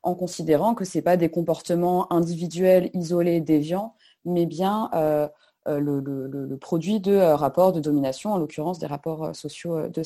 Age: 20-39